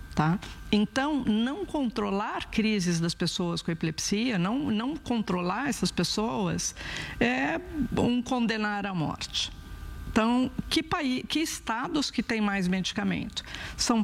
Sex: female